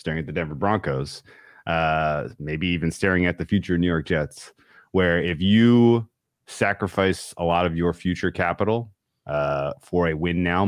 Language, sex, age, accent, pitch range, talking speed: English, male, 30-49, American, 80-100 Hz, 165 wpm